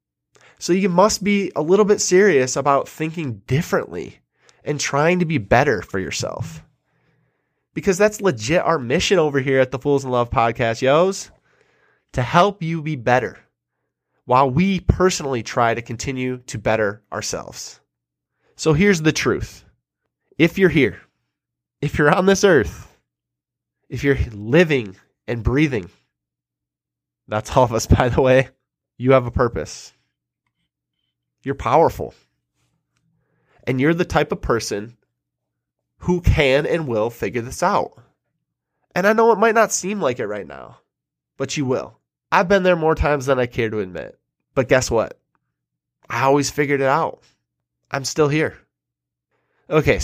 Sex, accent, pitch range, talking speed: male, American, 105-160 Hz, 150 wpm